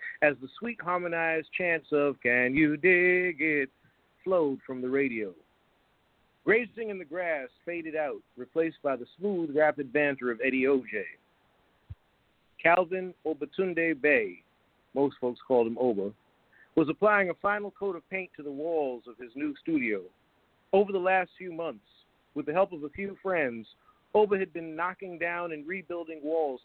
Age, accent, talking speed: 50-69, American, 160 wpm